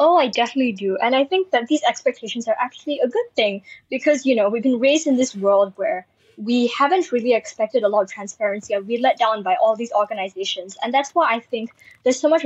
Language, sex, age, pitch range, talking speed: English, female, 10-29, 210-280 Hz, 235 wpm